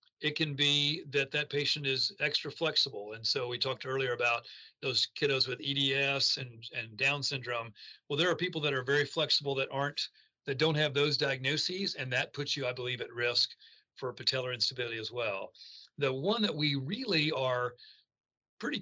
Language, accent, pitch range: English, American, 125-155 Hz